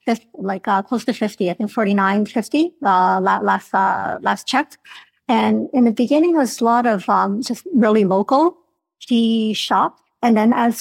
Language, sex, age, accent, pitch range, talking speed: English, female, 50-69, American, 200-240 Hz, 180 wpm